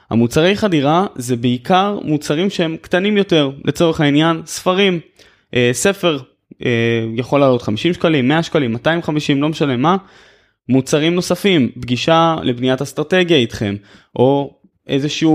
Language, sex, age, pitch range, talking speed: Hebrew, male, 20-39, 120-155 Hz, 125 wpm